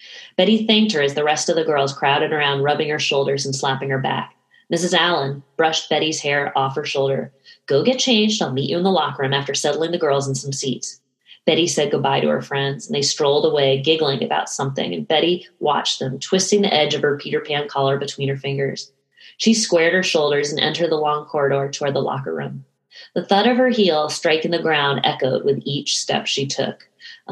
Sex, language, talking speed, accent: female, English, 220 wpm, American